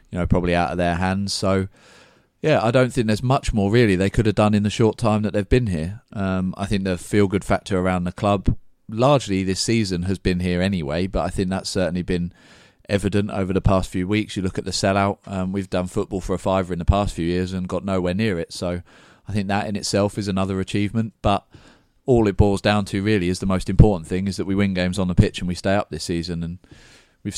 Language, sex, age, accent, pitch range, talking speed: English, male, 30-49, British, 90-100 Hz, 255 wpm